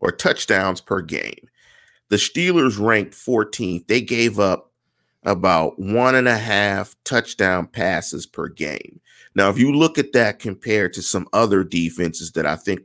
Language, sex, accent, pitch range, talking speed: English, male, American, 90-110 Hz, 160 wpm